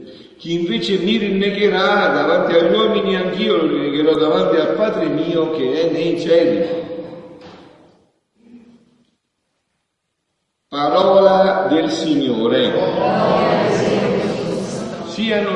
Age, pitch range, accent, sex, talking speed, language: 50-69, 140-195 Hz, native, male, 85 wpm, Italian